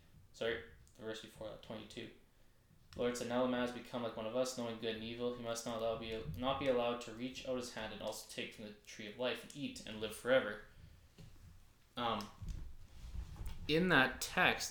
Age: 20-39